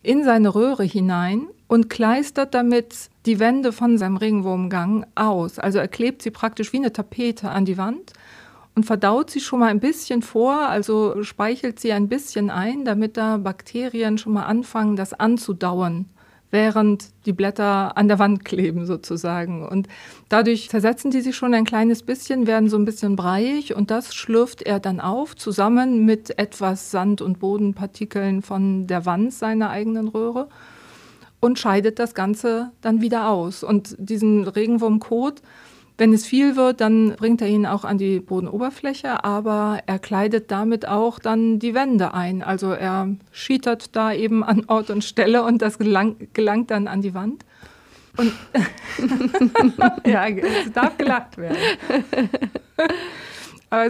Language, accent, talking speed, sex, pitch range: German, German, 155 wpm, female, 200-235 Hz